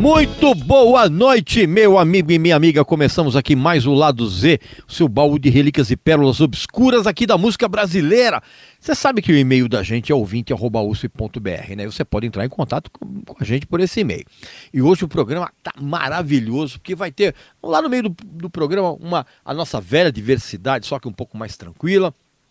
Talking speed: 195 wpm